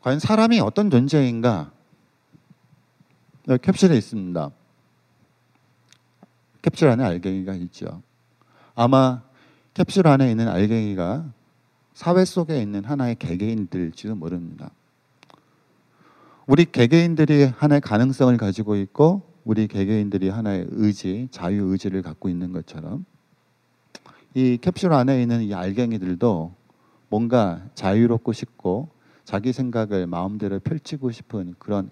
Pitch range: 95-140 Hz